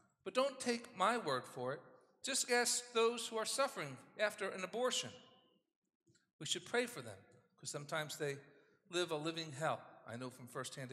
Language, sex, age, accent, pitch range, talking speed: English, male, 50-69, American, 185-255 Hz, 170 wpm